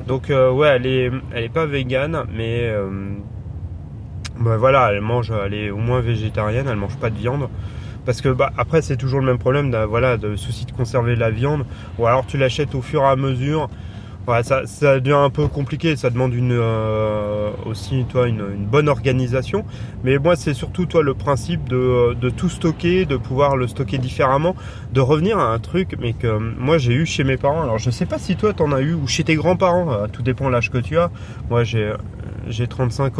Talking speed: 230 wpm